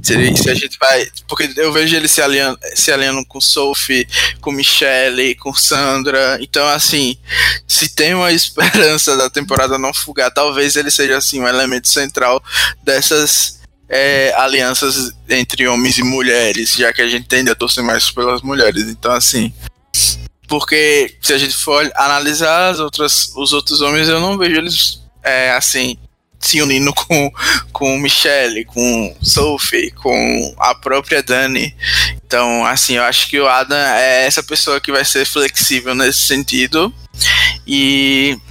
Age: 20-39